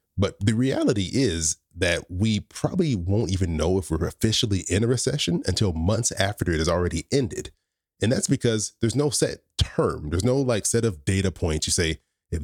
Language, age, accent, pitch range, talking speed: English, 30-49, American, 85-110 Hz, 195 wpm